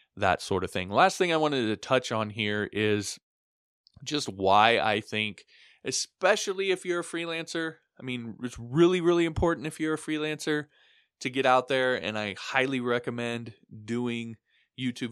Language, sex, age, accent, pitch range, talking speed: English, male, 20-39, American, 105-135 Hz, 165 wpm